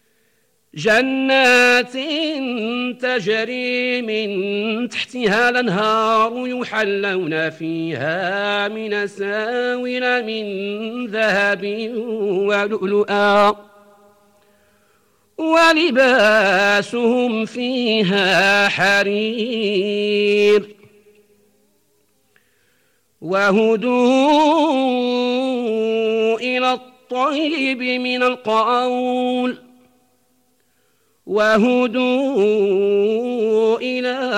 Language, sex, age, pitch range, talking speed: Arabic, male, 50-69, 205-250 Hz, 40 wpm